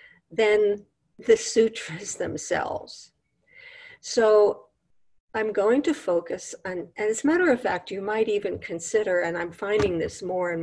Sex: female